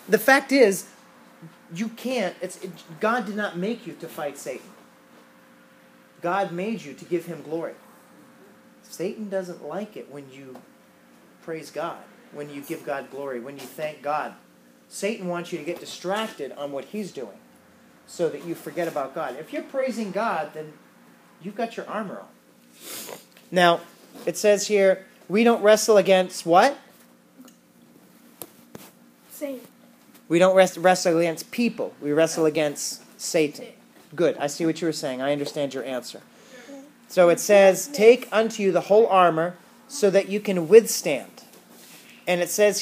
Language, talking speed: English, 155 wpm